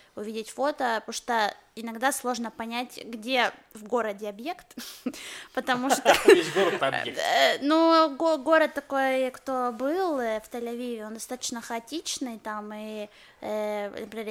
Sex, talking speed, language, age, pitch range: female, 105 wpm, Russian, 20-39, 220-260 Hz